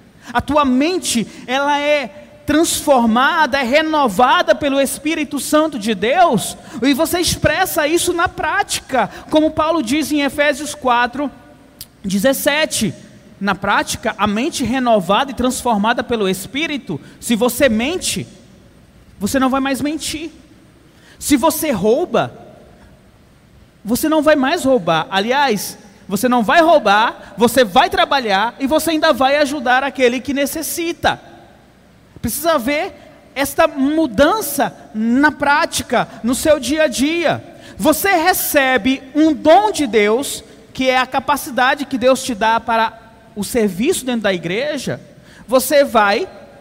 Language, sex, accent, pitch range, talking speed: Portuguese, male, Brazilian, 245-310 Hz, 125 wpm